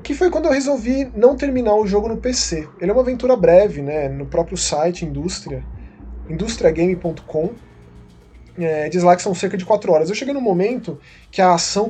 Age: 20-39